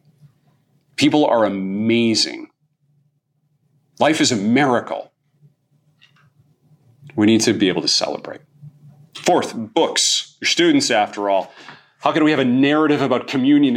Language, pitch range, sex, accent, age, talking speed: English, 115-155 Hz, male, American, 40-59, 120 wpm